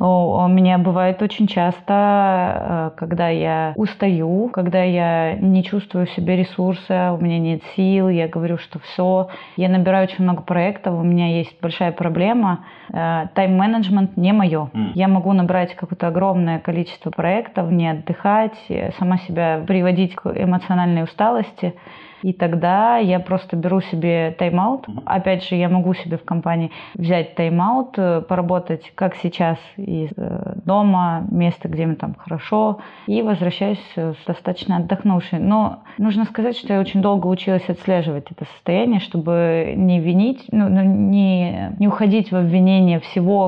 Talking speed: 145 wpm